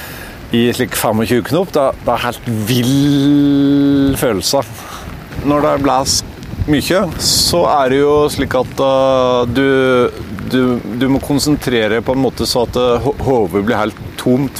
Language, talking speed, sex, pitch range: English, 150 wpm, male, 110-140 Hz